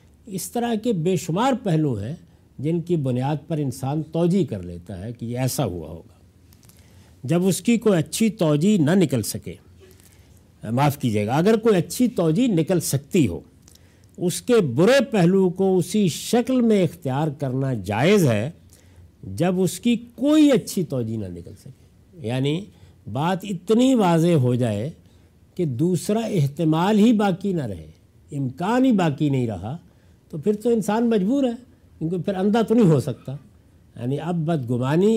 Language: Urdu